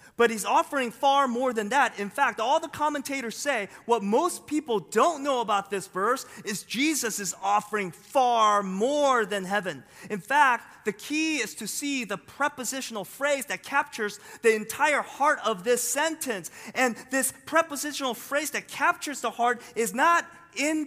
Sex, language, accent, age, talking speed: male, English, American, 30-49, 165 wpm